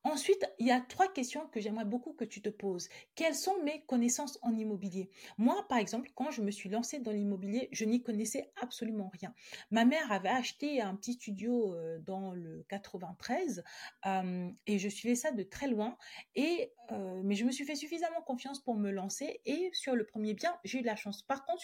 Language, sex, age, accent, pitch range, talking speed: French, female, 40-59, French, 210-270 Hz, 200 wpm